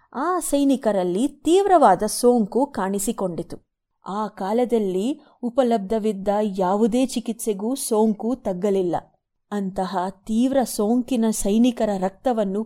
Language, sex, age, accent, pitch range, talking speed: Kannada, female, 30-49, native, 195-240 Hz, 80 wpm